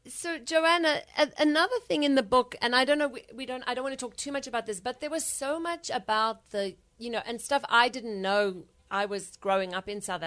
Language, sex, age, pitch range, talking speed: English, female, 30-49, 185-245 Hz, 250 wpm